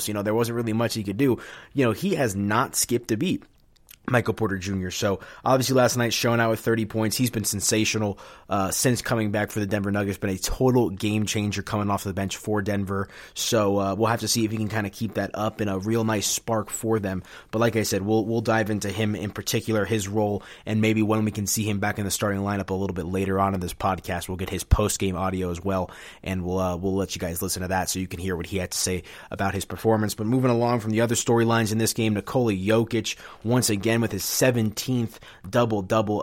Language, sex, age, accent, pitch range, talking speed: English, male, 20-39, American, 100-115 Hz, 255 wpm